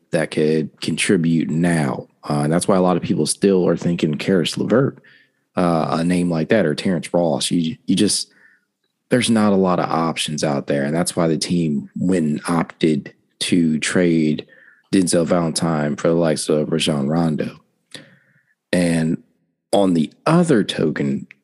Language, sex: English, male